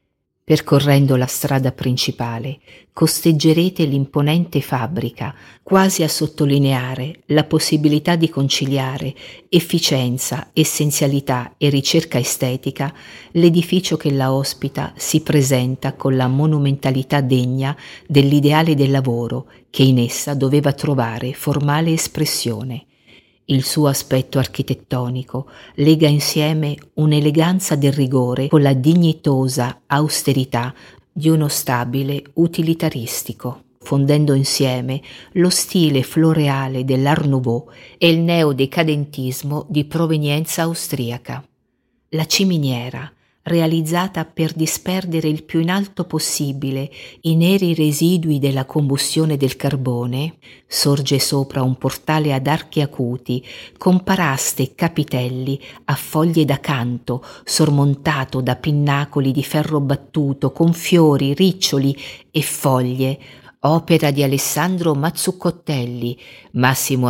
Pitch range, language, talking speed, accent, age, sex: 130-155 Hz, Italian, 105 wpm, native, 50-69, female